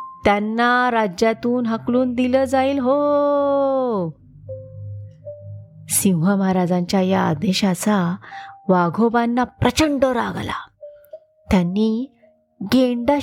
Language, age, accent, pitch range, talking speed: Marathi, 30-49, native, 190-270 Hz, 70 wpm